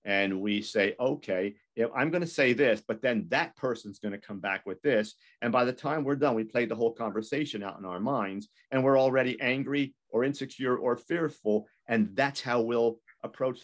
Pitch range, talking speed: 100-130 Hz, 205 wpm